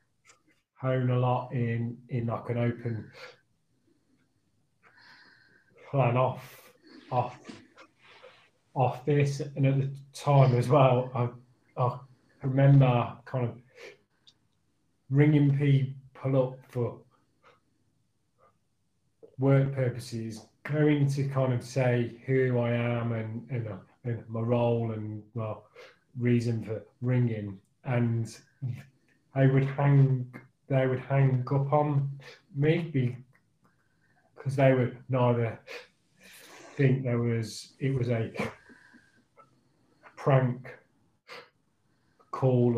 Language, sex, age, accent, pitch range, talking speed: English, male, 30-49, British, 120-135 Hz, 95 wpm